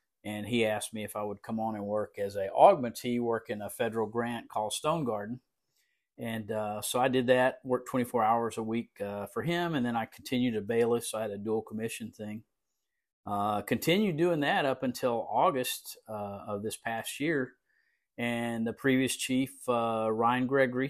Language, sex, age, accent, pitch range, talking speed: English, male, 50-69, American, 105-125 Hz, 195 wpm